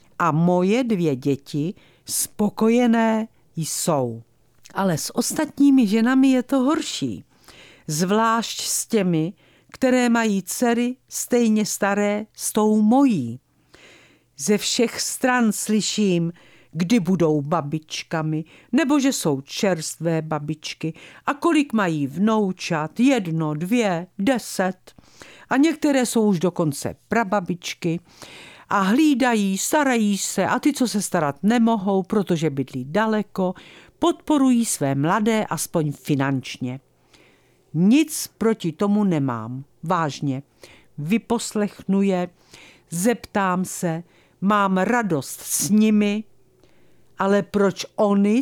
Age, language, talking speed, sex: 50-69, Czech, 105 wpm, female